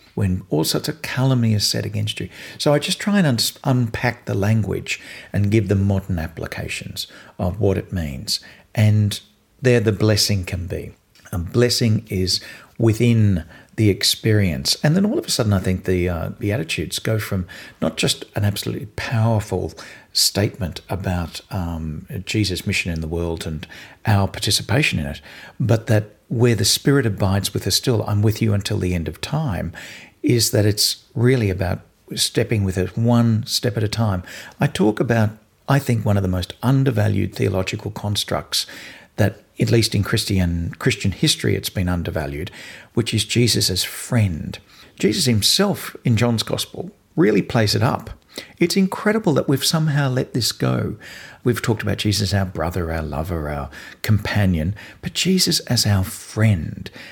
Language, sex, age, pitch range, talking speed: English, male, 50-69, 95-120 Hz, 170 wpm